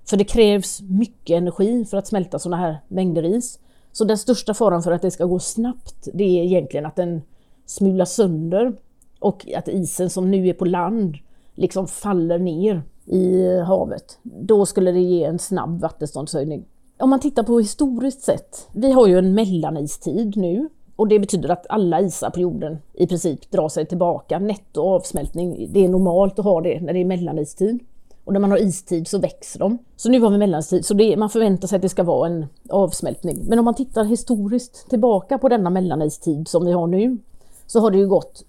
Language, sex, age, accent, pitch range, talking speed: Swedish, female, 30-49, native, 170-215 Hz, 200 wpm